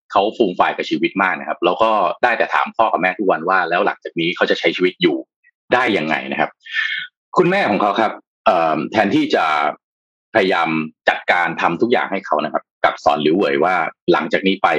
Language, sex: Thai, male